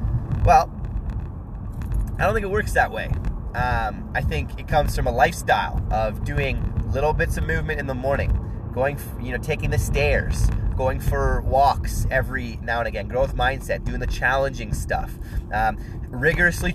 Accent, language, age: American, English, 20-39